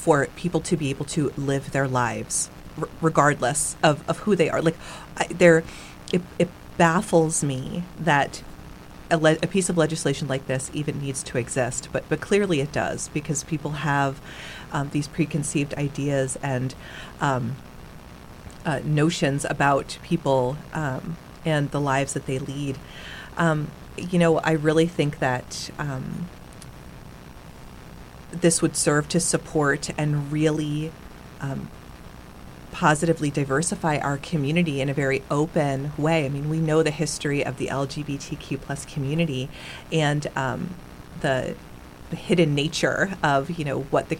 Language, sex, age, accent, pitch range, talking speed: English, female, 30-49, American, 135-160 Hz, 140 wpm